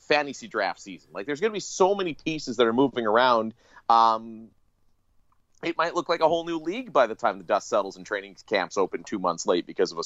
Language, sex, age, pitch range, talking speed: English, male, 30-49, 100-150 Hz, 235 wpm